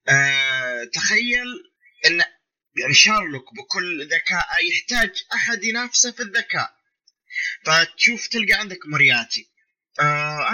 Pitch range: 190-270 Hz